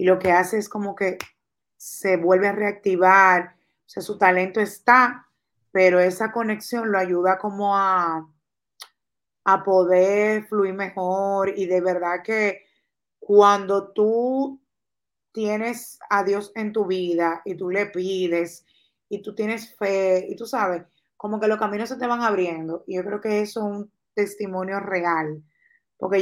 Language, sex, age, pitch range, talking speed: Spanish, female, 30-49, 185-215 Hz, 155 wpm